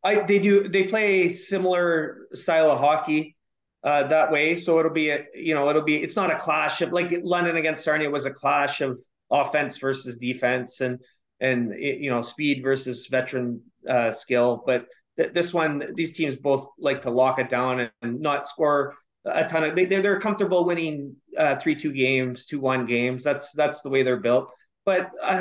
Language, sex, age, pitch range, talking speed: English, male, 30-49, 135-175 Hz, 195 wpm